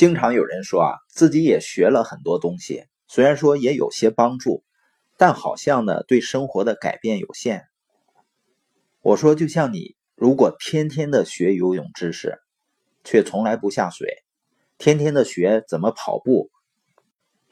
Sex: male